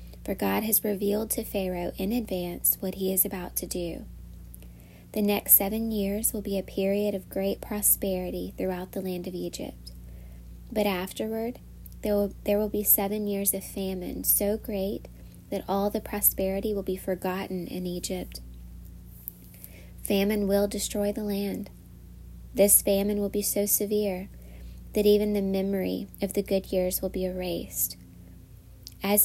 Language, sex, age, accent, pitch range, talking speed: English, female, 20-39, American, 185-205 Hz, 155 wpm